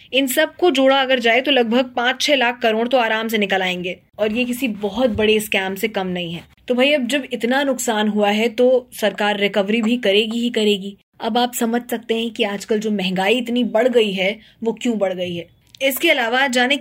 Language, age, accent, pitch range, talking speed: Hindi, 20-39, native, 210-255 Hz, 225 wpm